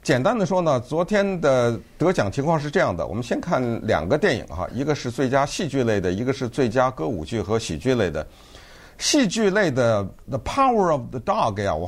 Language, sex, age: Chinese, male, 50-69